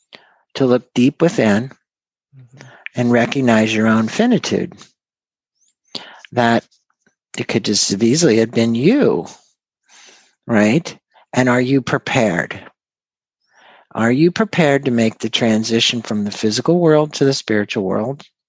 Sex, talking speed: male, 125 wpm